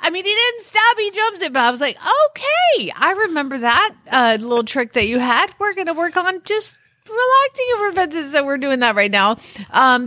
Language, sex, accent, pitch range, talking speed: English, female, American, 200-295 Hz, 225 wpm